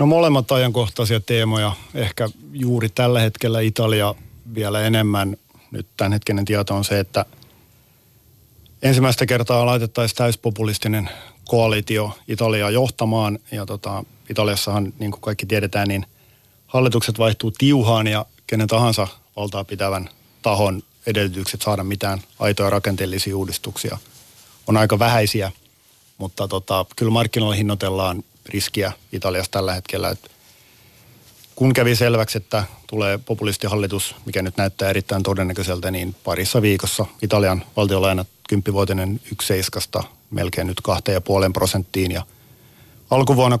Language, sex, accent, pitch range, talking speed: Finnish, male, native, 100-115 Hz, 115 wpm